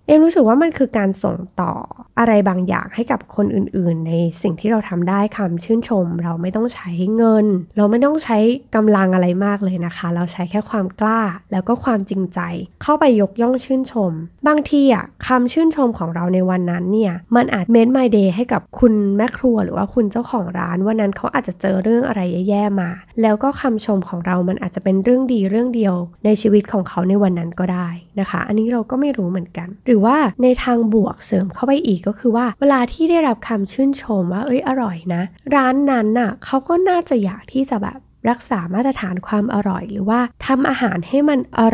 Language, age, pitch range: Thai, 20-39, 185-245 Hz